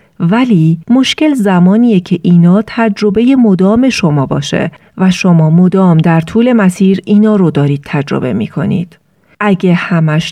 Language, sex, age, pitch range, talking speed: Persian, female, 40-59, 150-205 Hz, 130 wpm